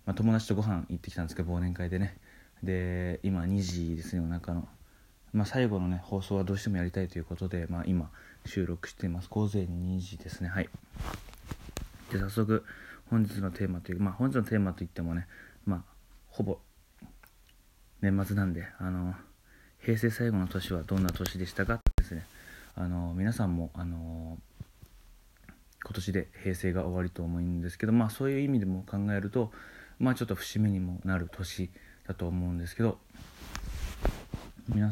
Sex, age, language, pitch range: male, 20-39, Japanese, 90-105 Hz